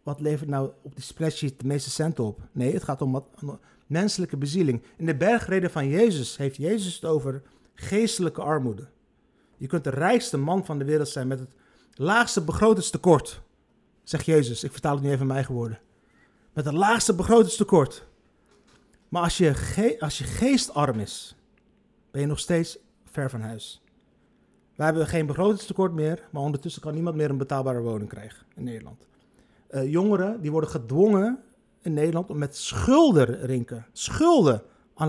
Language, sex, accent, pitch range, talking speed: Dutch, male, Dutch, 140-195 Hz, 170 wpm